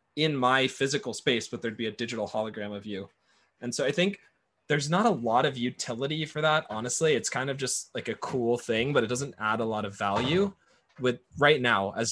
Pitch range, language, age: 115-135 Hz, English, 20-39